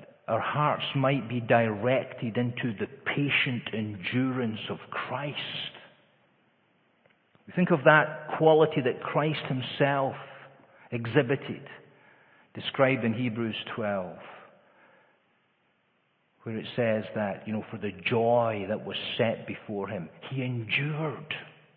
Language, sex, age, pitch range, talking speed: English, male, 50-69, 110-140 Hz, 110 wpm